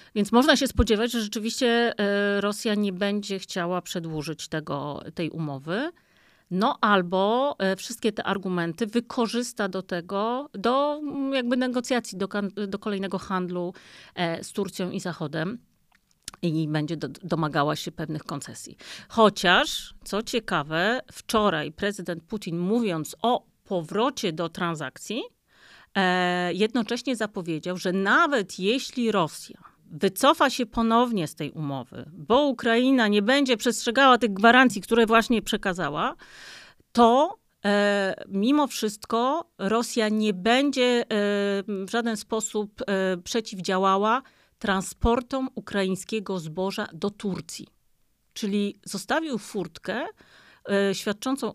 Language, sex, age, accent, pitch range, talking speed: Polish, female, 40-59, native, 185-235 Hz, 105 wpm